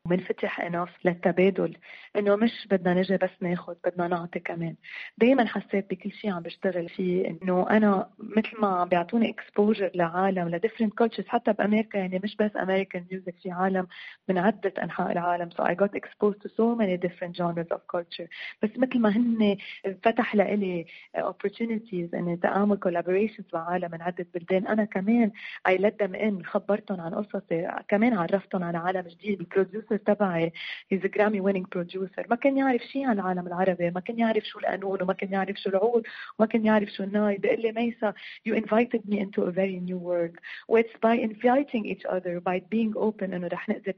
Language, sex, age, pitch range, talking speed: Arabic, female, 30-49, 185-220 Hz, 165 wpm